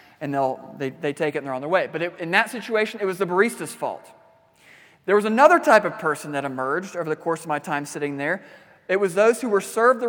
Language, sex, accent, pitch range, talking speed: English, male, American, 170-225 Hz, 260 wpm